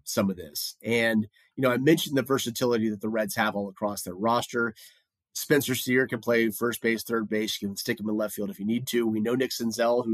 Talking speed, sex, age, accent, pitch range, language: 250 wpm, male, 30-49, American, 105-130 Hz, English